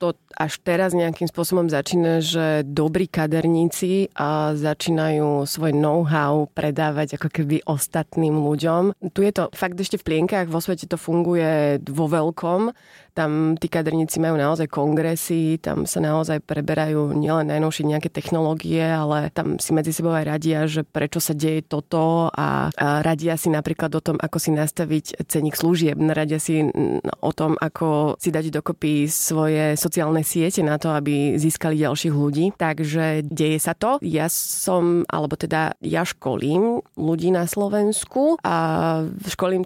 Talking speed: 150 wpm